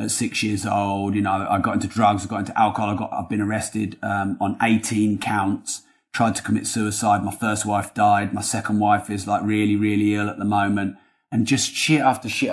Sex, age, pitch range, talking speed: male, 30-49, 105-135 Hz, 225 wpm